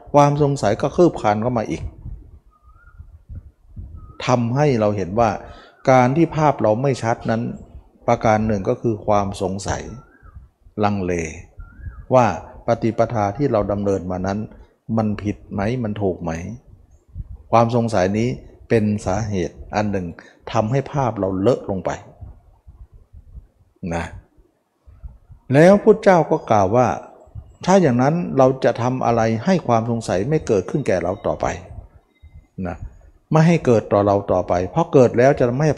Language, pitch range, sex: Thai, 90-125 Hz, male